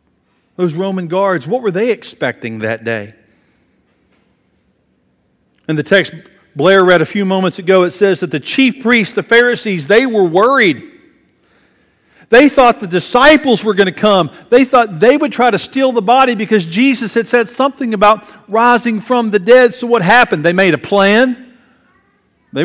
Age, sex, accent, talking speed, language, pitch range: 50-69, male, American, 170 wpm, English, 170-240 Hz